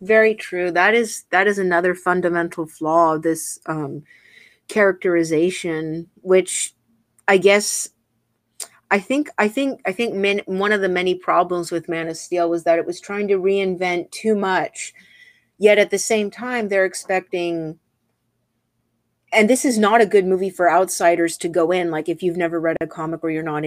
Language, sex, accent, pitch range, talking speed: English, female, American, 165-195 Hz, 175 wpm